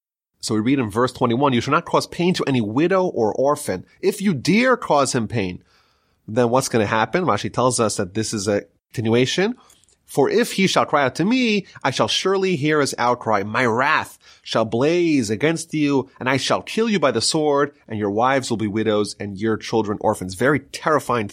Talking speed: 210 wpm